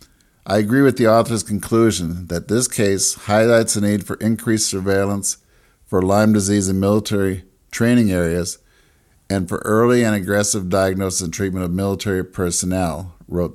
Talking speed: 150 wpm